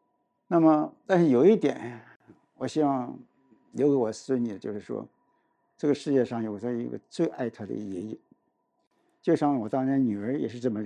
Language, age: Chinese, 60-79